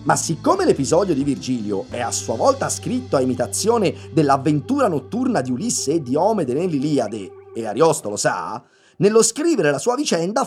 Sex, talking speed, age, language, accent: male, 165 wpm, 30-49, Italian, native